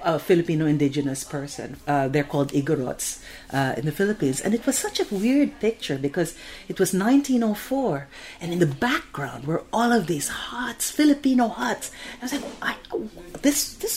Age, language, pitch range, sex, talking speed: 40-59, English, 145-190 Hz, female, 175 wpm